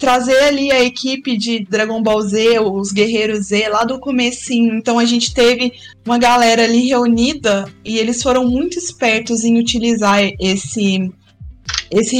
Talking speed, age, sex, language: 155 wpm, 20-39, female, Portuguese